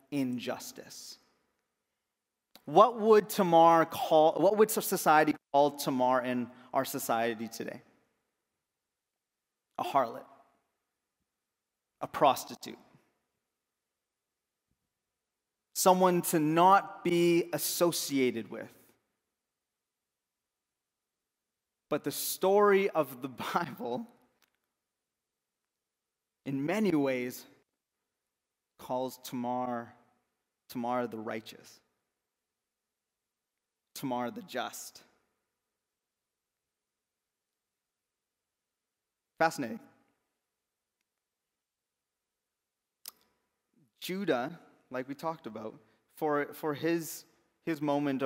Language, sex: English, male